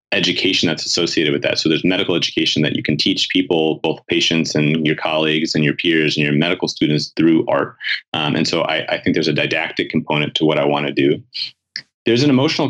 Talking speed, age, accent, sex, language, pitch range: 220 wpm, 30-49, American, male, English, 75-95 Hz